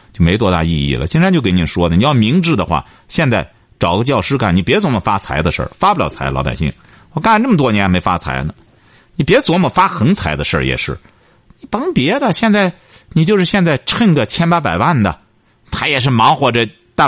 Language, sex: Chinese, male